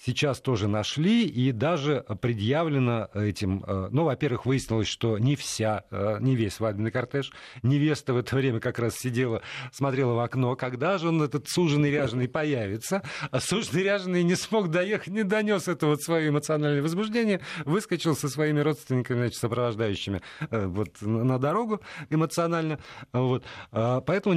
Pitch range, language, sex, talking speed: 115-155 Hz, Russian, male, 140 wpm